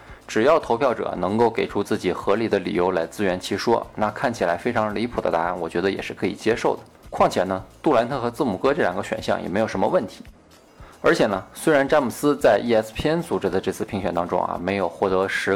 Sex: male